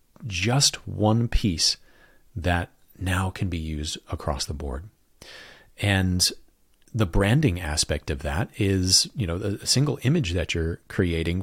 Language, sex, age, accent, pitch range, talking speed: English, male, 40-59, American, 90-115 Hz, 135 wpm